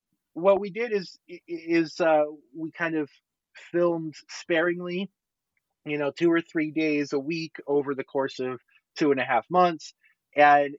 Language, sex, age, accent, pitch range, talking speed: English, male, 30-49, American, 130-155 Hz, 160 wpm